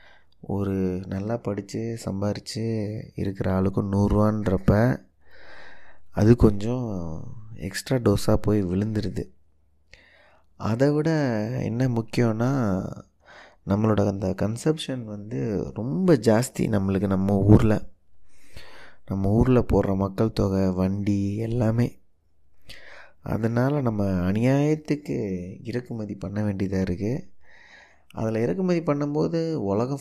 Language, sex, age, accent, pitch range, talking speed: Tamil, male, 20-39, native, 95-125 Hz, 90 wpm